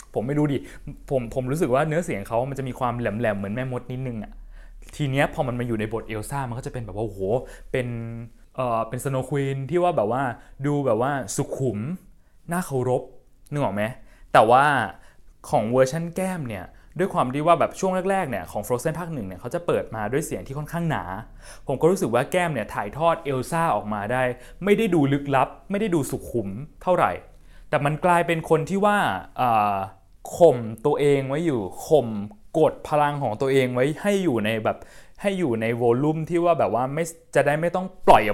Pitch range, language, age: 115-155 Hz, Thai, 20-39